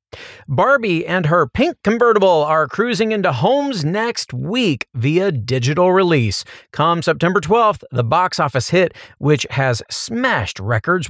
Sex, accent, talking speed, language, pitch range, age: male, American, 135 wpm, English, 130-180 Hz, 40-59